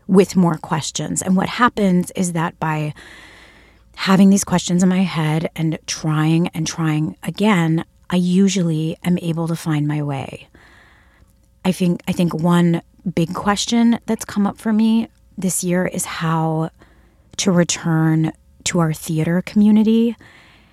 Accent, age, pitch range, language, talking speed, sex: American, 30-49, 160-195 Hz, English, 145 wpm, female